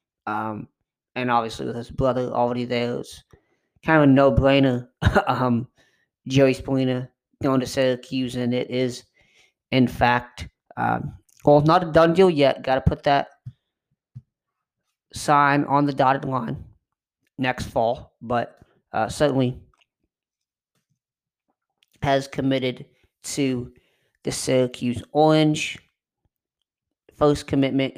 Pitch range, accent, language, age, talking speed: 125-145 Hz, American, English, 30-49, 115 wpm